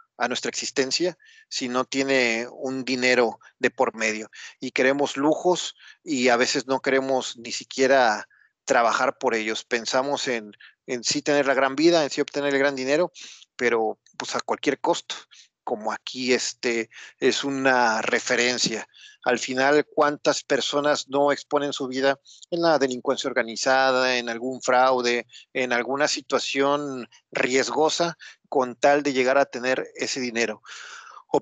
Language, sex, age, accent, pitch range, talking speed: Spanish, male, 40-59, Mexican, 125-150 Hz, 145 wpm